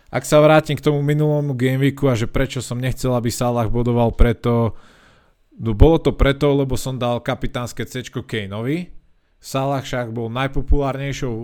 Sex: male